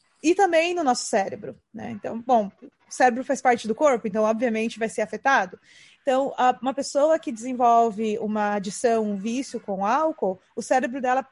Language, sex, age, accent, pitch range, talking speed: Portuguese, female, 20-39, Brazilian, 220-275 Hz, 180 wpm